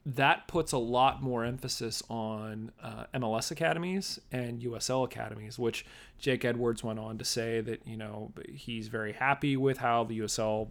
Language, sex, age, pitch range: English, male, 30-49, 110-125 Hz